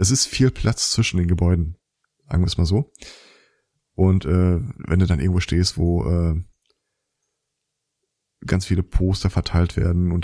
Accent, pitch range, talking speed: German, 95-115 Hz, 160 wpm